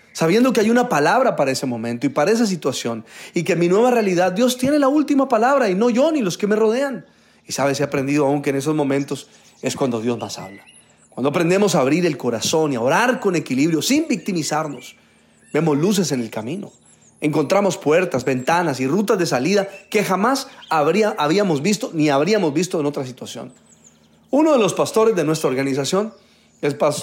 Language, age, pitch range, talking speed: Spanish, 40-59, 145-215 Hz, 195 wpm